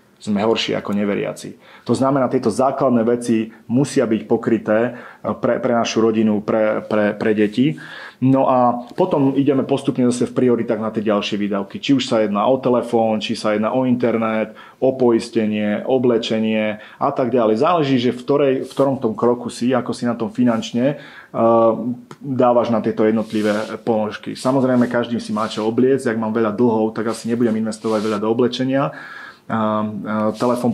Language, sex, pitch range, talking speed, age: Slovak, male, 110-125 Hz, 170 wpm, 30-49